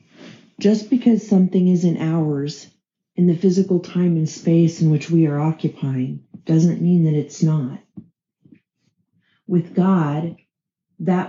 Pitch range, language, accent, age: 160-195 Hz, English, American, 40-59